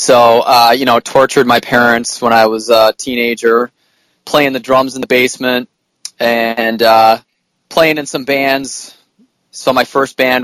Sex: male